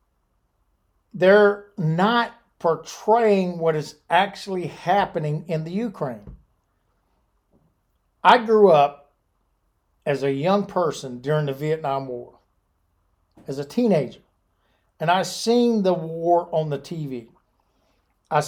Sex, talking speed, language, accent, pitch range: male, 105 wpm, English, American, 140-195 Hz